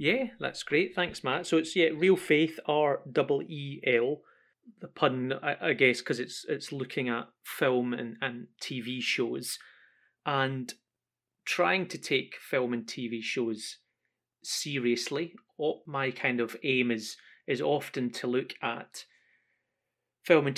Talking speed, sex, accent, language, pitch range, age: 145 wpm, male, British, English, 120-145 Hz, 30-49